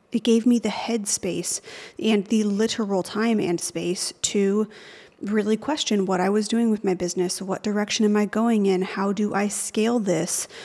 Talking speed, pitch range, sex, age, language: 180 wpm, 190-220 Hz, female, 30-49, English